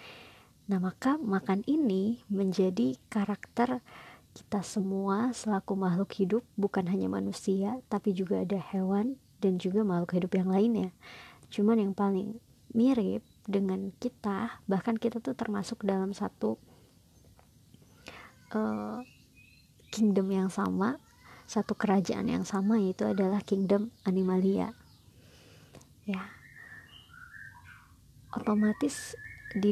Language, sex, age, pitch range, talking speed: Indonesian, male, 30-49, 190-220 Hz, 105 wpm